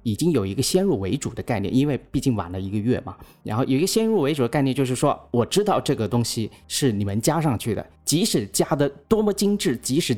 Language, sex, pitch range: Chinese, male, 105-135 Hz